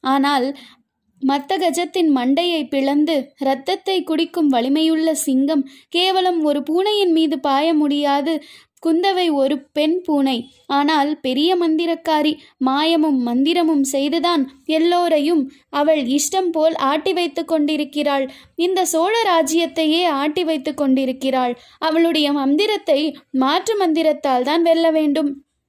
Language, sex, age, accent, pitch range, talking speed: Tamil, female, 20-39, native, 280-335 Hz, 105 wpm